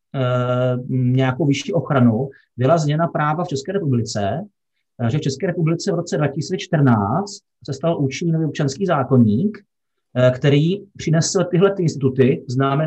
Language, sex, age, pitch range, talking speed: Slovak, male, 30-49, 130-155 Hz, 130 wpm